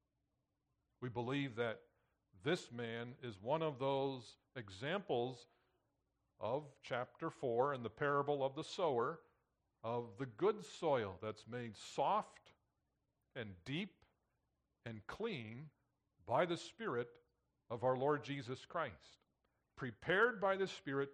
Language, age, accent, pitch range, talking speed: English, 50-69, American, 120-155 Hz, 120 wpm